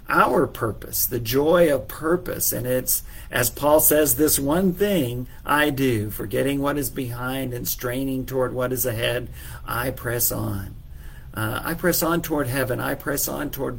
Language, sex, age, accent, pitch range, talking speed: English, male, 50-69, American, 115-145 Hz, 170 wpm